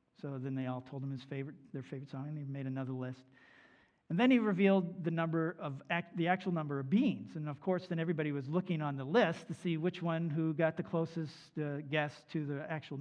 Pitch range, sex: 145-185 Hz, male